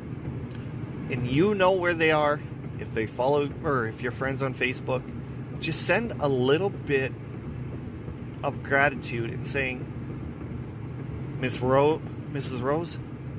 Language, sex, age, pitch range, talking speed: English, male, 30-49, 120-140 Hz, 125 wpm